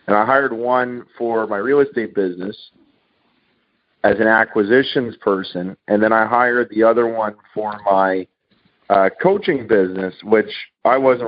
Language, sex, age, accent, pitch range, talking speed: English, male, 40-59, American, 105-120 Hz, 150 wpm